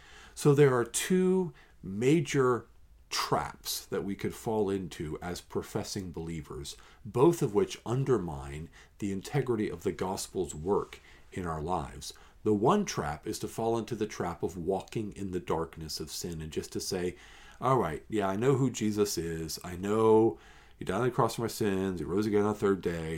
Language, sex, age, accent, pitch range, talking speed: English, male, 50-69, American, 85-120 Hz, 185 wpm